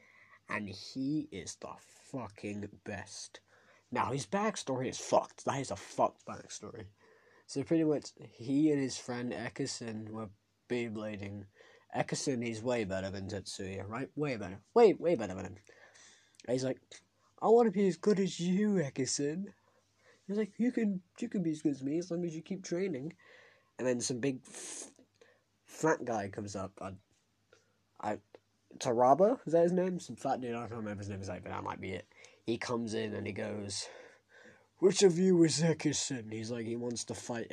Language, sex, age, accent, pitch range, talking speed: English, male, 20-39, British, 105-150 Hz, 190 wpm